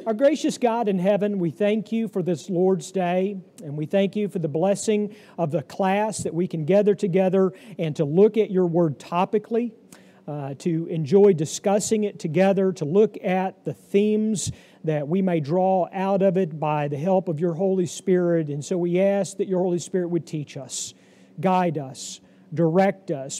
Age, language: 50-69, English